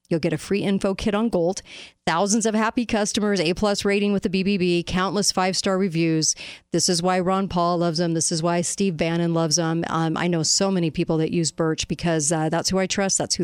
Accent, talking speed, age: American, 230 wpm, 40-59